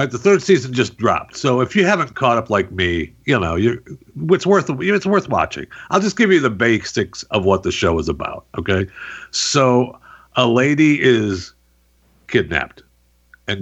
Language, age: English, 60-79